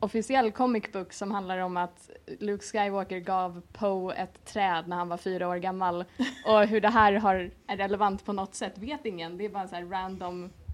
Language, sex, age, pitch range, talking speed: Swedish, female, 20-39, 190-230 Hz, 210 wpm